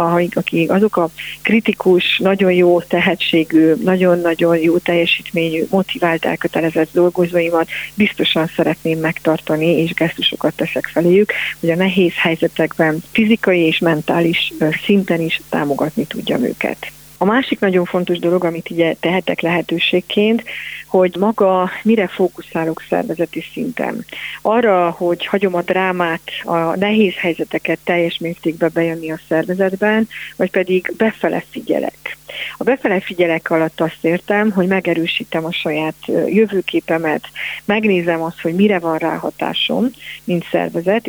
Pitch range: 165-190 Hz